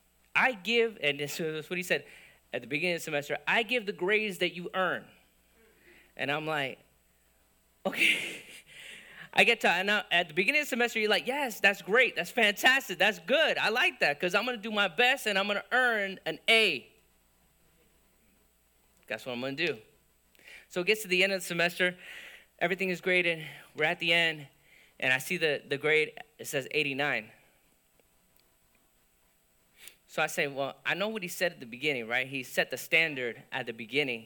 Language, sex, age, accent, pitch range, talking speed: English, male, 30-49, American, 135-215 Hz, 200 wpm